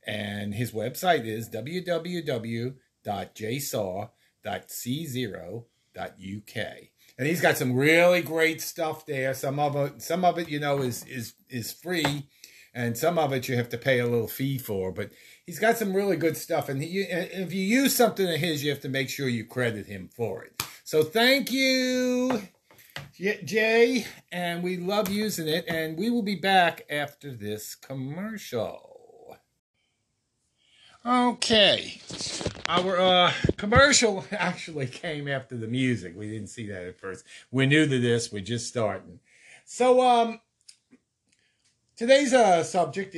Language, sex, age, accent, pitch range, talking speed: English, male, 50-69, American, 115-180 Hz, 140 wpm